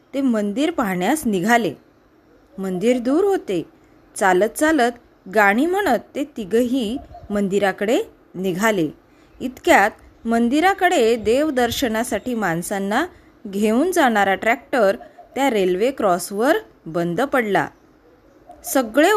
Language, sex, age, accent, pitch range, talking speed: Marathi, female, 20-39, native, 210-295 Hz, 90 wpm